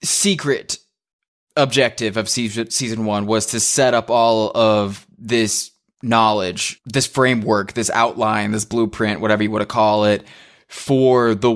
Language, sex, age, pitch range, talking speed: English, male, 20-39, 105-125 Hz, 140 wpm